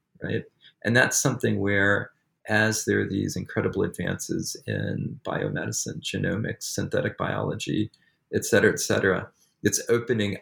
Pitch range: 95-120 Hz